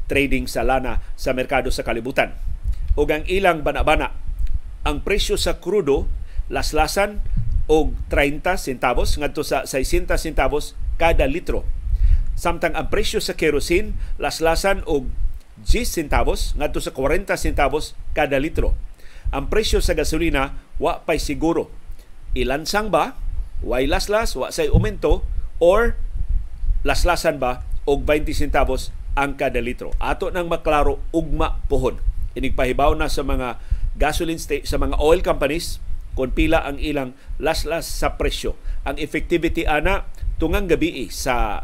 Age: 40-59